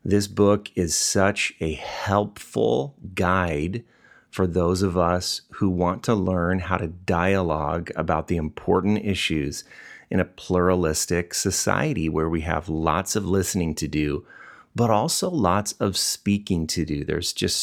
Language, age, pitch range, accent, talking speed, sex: English, 30-49, 80-95 Hz, American, 145 wpm, male